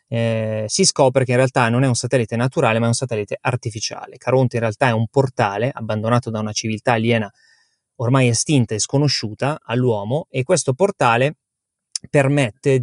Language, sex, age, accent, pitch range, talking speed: Italian, male, 30-49, native, 110-135 Hz, 170 wpm